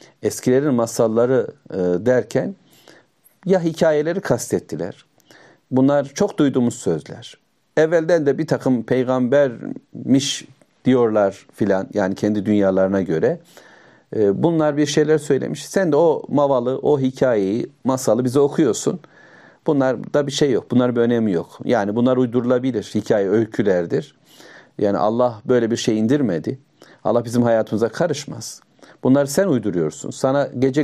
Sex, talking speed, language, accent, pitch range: male, 125 wpm, Turkish, native, 115-140 Hz